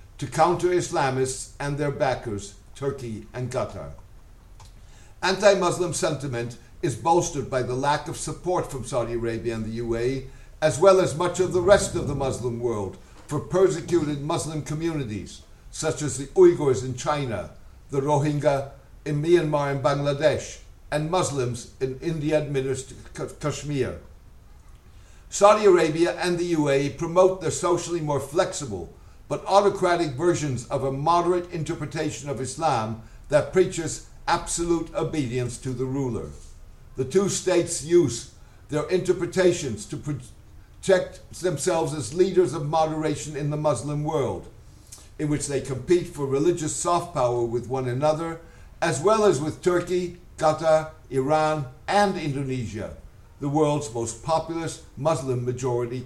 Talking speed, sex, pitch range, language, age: 135 wpm, male, 125-170 Hz, English, 60-79